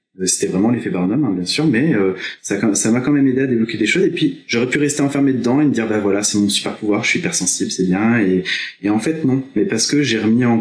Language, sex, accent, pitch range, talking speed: French, male, French, 105-130 Hz, 290 wpm